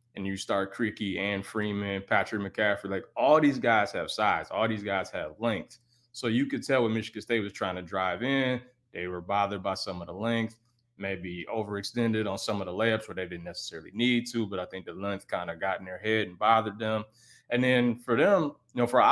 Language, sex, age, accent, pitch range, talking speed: English, male, 20-39, American, 100-120 Hz, 230 wpm